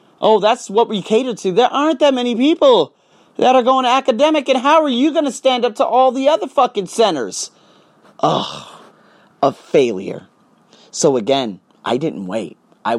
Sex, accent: male, American